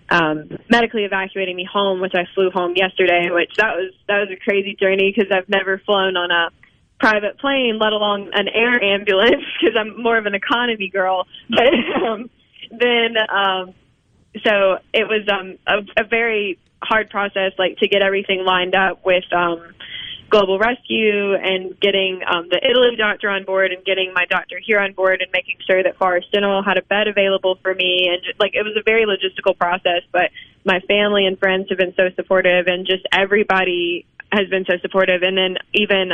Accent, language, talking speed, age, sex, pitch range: American, English, 195 wpm, 10-29, female, 185-205 Hz